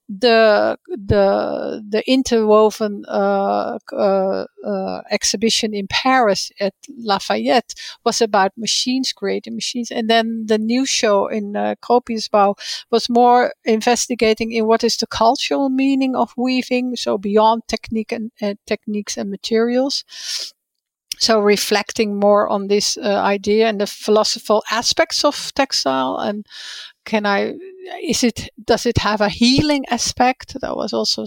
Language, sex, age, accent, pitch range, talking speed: English, female, 60-79, Dutch, 200-240 Hz, 135 wpm